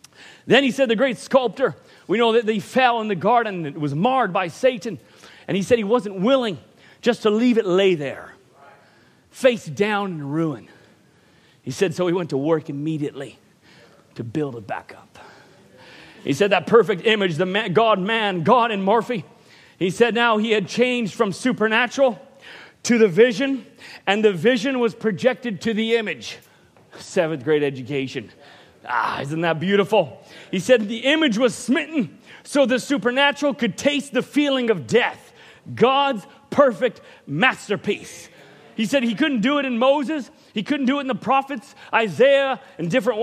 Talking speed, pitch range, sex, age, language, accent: 170 wpm, 195-260 Hz, male, 40-59, English, American